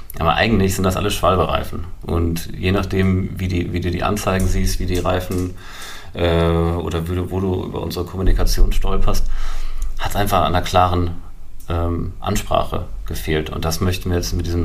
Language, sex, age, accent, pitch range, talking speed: German, male, 30-49, German, 85-95 Hz, 185 wpm